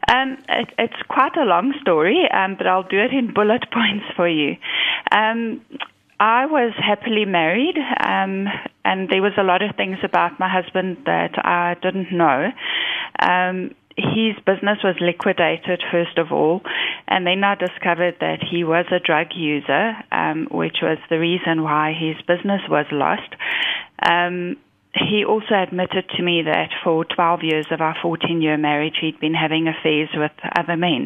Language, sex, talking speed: English, female, 170 wpm